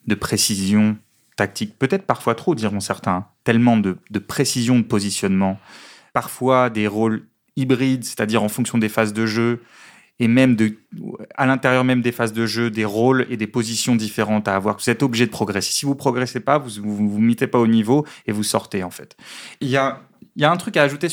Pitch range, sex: 105-130 Hz, male